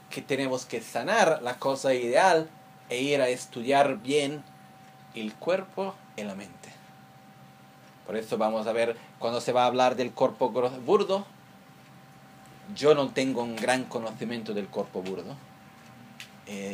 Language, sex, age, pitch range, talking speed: Italian, male, 30-49, 110-135 Hz, 145 wpm